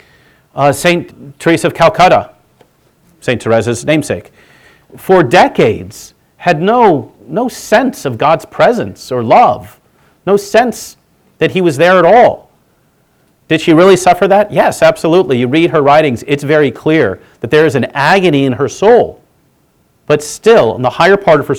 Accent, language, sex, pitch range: American, English, male, 140-185 Hz